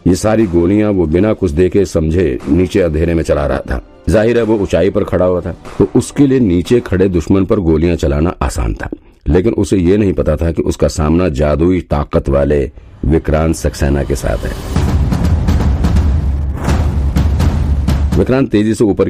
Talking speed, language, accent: 55 wpm, Hindi, native